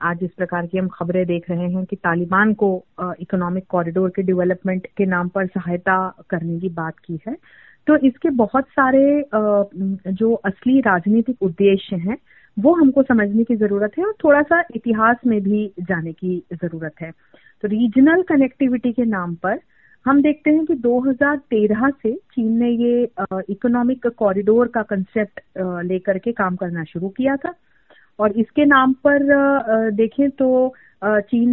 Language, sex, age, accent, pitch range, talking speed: Hindi, female, 30-49, native, 200-260 Hz, 160 wpm